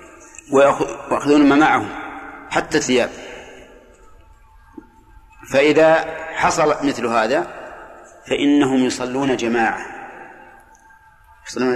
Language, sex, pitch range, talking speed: Arabic, male, 130-155 Hz, 65 wpm